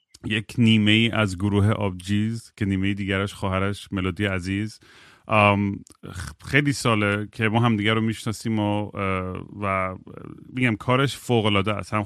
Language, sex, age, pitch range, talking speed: Persian, male, 30-49, 100-120 Hz, 140 wpm